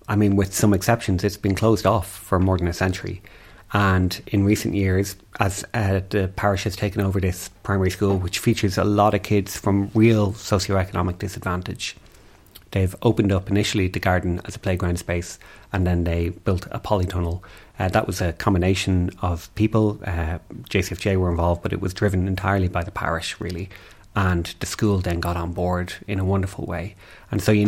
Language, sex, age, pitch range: English, male, 30-49, 90-105 Hz